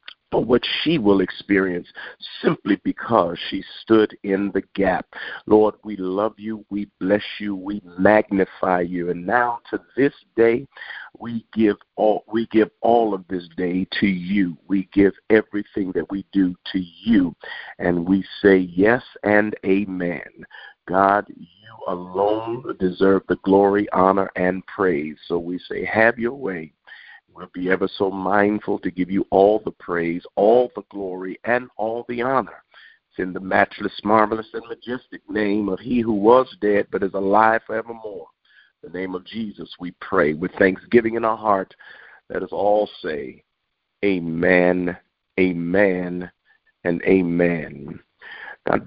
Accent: American